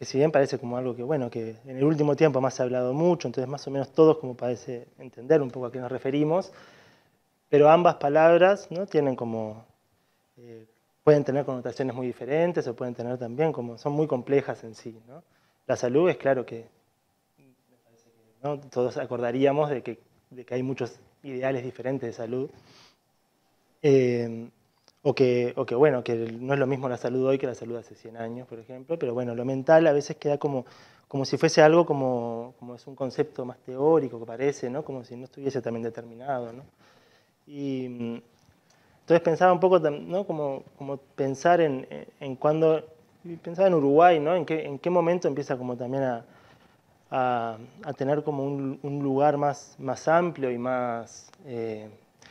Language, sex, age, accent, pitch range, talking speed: Spanish, male, 20-39, Argentinian, 120-150 Hz, 180 wpm